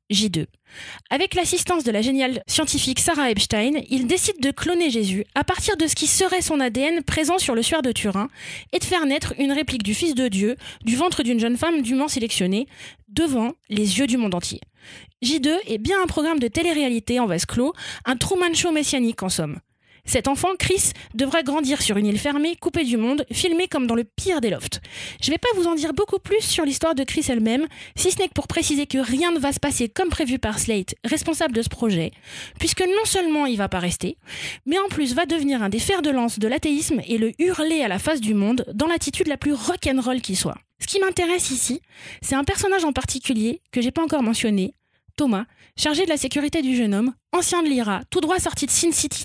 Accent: French